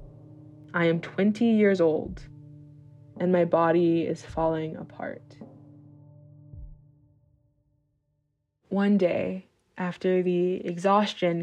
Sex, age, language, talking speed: female, 20-39, English, 85 wpm